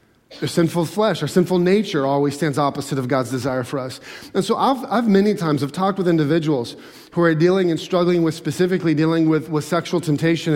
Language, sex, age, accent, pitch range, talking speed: English, male, 40-59, American, 155-180 Hz, 205 wpm